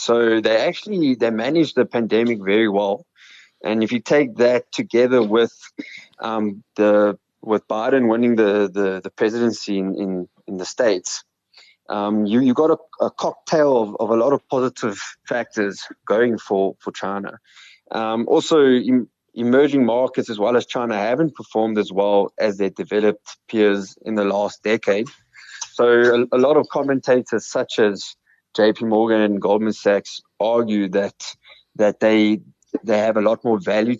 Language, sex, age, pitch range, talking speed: English, male, 20-39, 100-120 Hz, 160 wpm